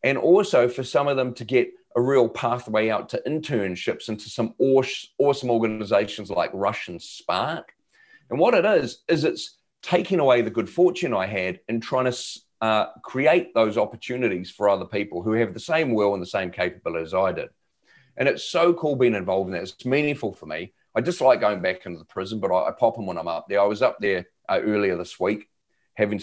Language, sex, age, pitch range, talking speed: English, male, 40-59, 95-125 Hz, 215 wpm